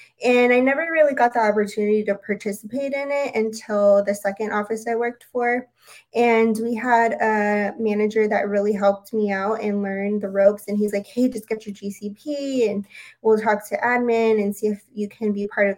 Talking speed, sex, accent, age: 200 wpm, female, American, 20-39